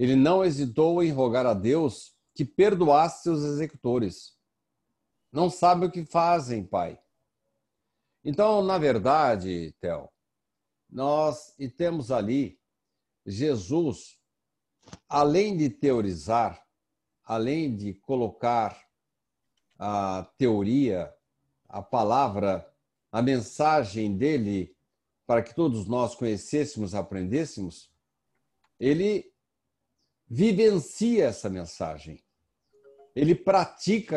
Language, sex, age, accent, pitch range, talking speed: Portuguese, male, 60-79, Brazilian, 115-180 Hz, 90 wpm